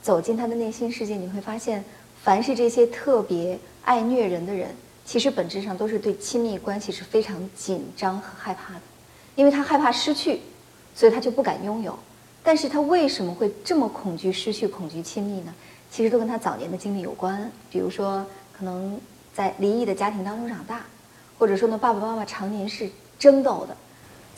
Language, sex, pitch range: Chinese, female, 195-250 Hz